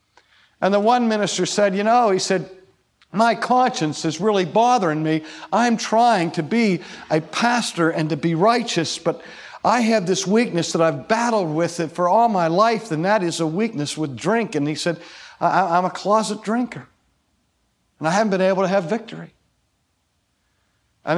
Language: English